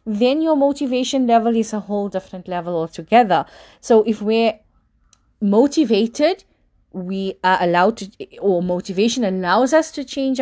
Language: English